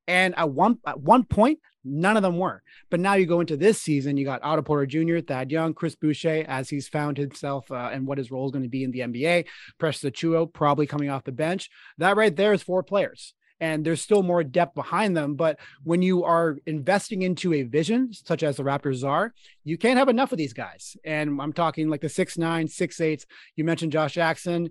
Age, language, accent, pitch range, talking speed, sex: 30-49, English, American, 145-175 Hz, 230 wpm, male